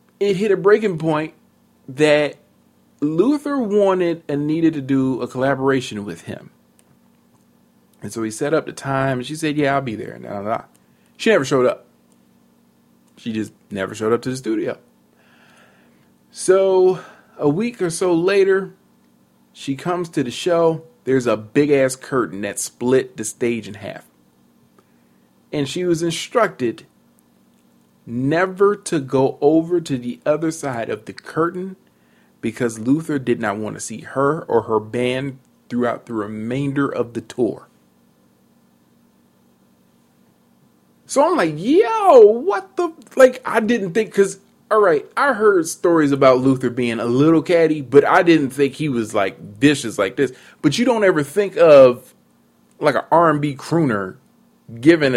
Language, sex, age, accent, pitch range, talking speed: English, male, 40-59, American, 110-170 Hz, 155 wpm